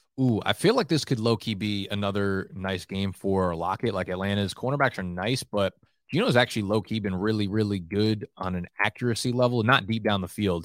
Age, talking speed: 20-39, 195 wpm